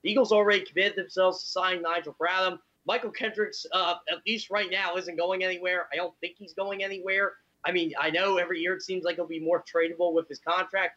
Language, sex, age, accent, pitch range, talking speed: English, male, 30-49, American, 165-210 Hz, 225 wpm